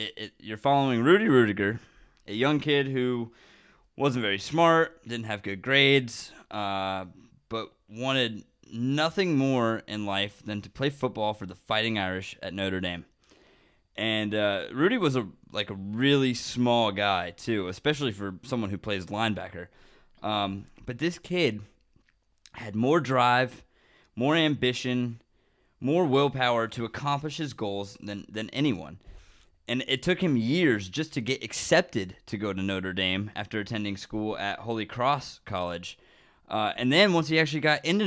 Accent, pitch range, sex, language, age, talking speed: American, 105-150 Hz, male, English, 20-39, 155 wpm